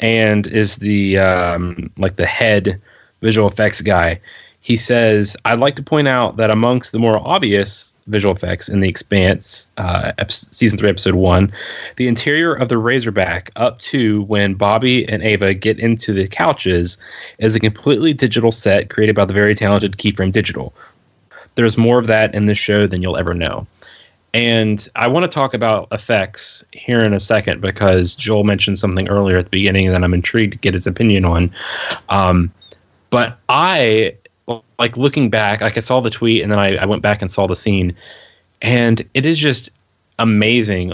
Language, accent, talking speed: English, American, 180 wpm